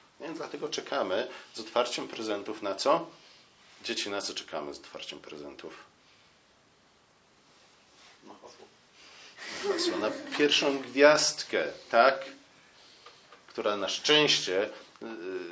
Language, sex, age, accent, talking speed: Polish, male, 40-59, native, 80 wpm